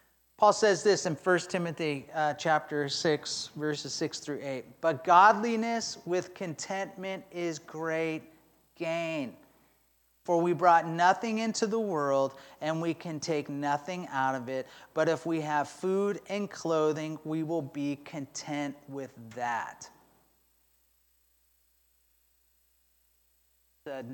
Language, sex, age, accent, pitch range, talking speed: English, male, 40-59, American, 135-175 Hz, 120 wpm